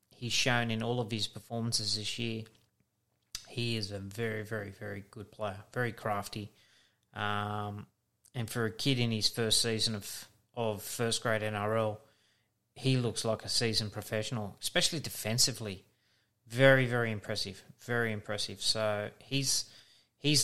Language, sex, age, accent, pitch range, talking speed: English, male, 30-49, Australian, 110-120 Hz, 145 wpm